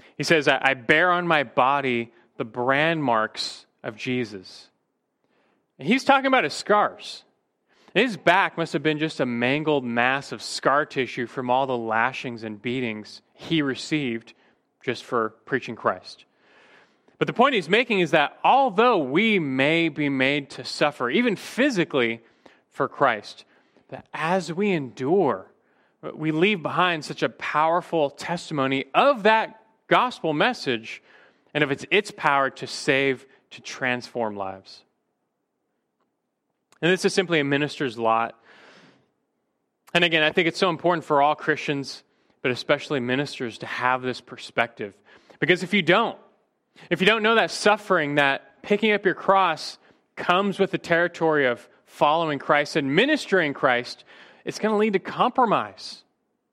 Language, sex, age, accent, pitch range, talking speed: English, male, 30-49, American, 130-180 Hz, 150 wpm